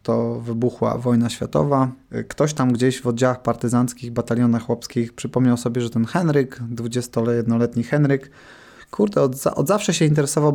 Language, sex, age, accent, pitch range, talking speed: Polish, male, 20-39, native, 120-140 Hz, 140 wpm